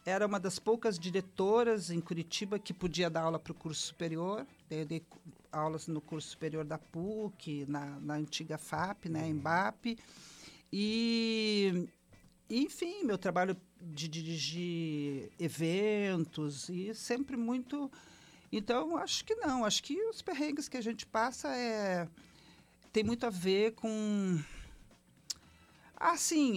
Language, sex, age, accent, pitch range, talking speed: Portuguese, male, 50-69, Brazilian, 165-220 Hz, 135 wpm